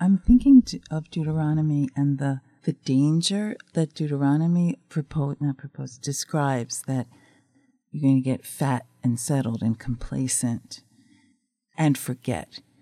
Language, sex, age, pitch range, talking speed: English, female, 50-69, 130-160 Hz, 115 wpm